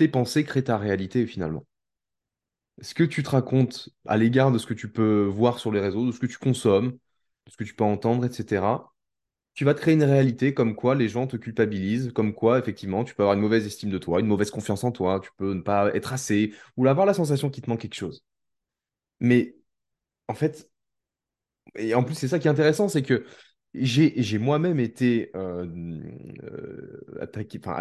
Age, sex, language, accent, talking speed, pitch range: 20-39, male, French, French, 210 wpm, 100-125 Hz